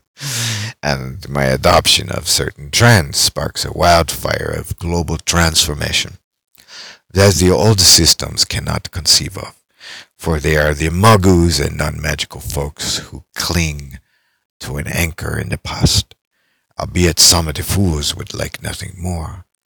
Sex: male